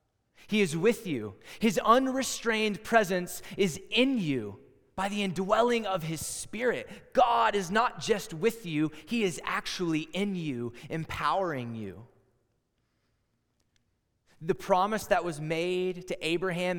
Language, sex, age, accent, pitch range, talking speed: English, male, 20-39, American, 135-195 Hz, 130 wpm